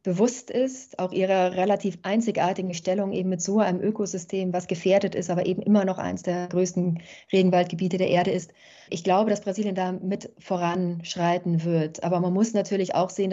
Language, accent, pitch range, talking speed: German, German, 180-205 Hz, 180 wpm